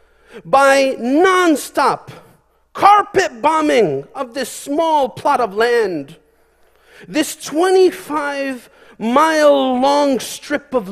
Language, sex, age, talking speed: English, male, 40-59, 80 wpm